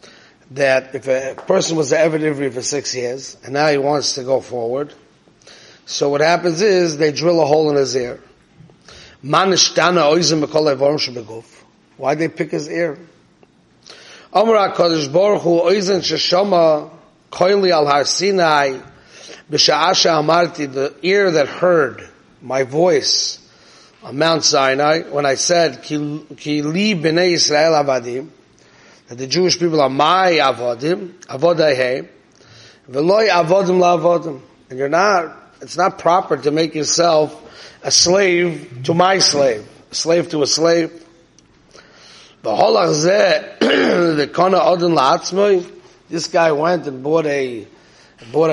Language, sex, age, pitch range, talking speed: English, male, 30-49, 140-175 Hz, 105 wpm